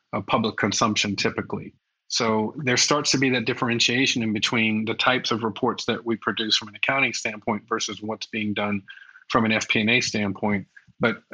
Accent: American